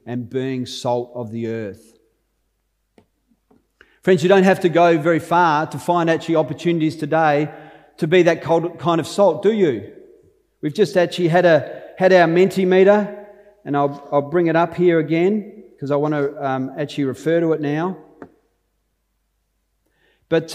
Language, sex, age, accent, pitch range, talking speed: English, male, 40-59, Australian, 140-180 Hz, 150 wpm